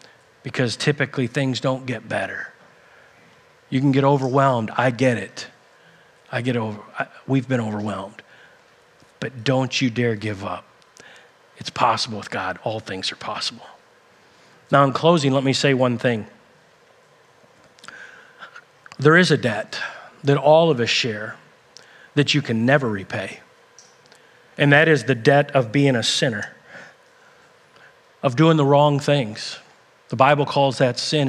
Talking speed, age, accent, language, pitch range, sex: 145 wpm, 40-59, American, English, 125-150 Hz, male